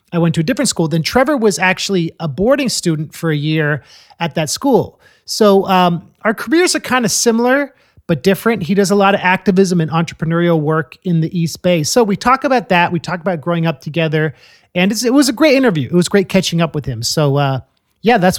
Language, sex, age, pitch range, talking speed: English, male, 30-49, 160-210 Hz, 230 wpm